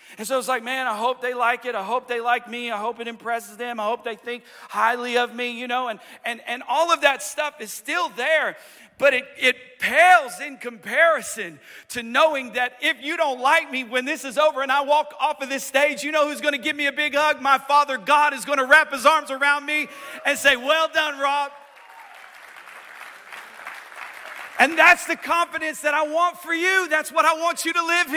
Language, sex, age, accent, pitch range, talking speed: English, male, 40-59, American, 260-320 Hz, 225 wpm